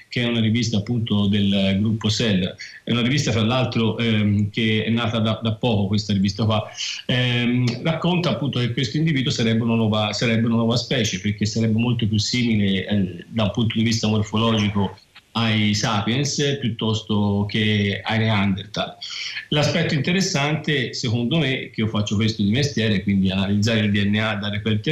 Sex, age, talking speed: male, 40-59, 170 wpm